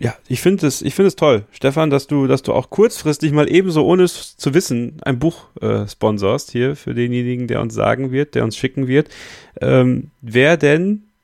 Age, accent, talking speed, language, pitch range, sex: 40-59, German, 210 wpm, German, 110-150 Hz, male